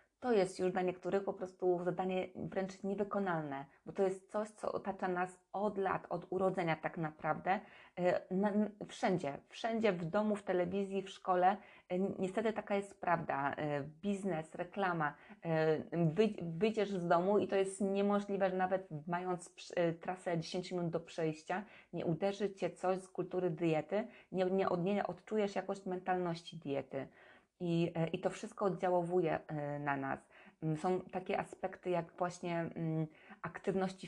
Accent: native